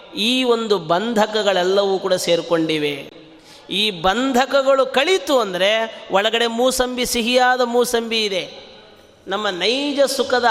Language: Kannada